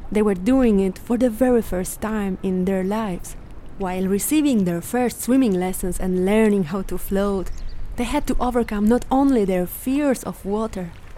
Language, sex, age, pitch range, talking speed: English, female, 20-39, 195-235 Hz, 175 wpm